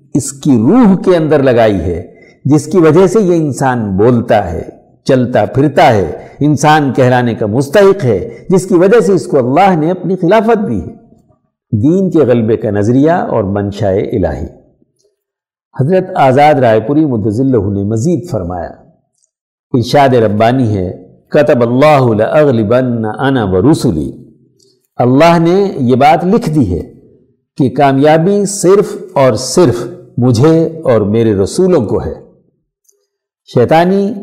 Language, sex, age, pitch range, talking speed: Urdu, male, 60-79, 120-180 Hz, 130 wpm